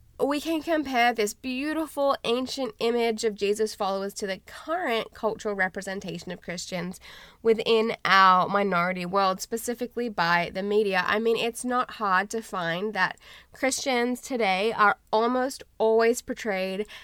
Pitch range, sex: 195-250 Hz, female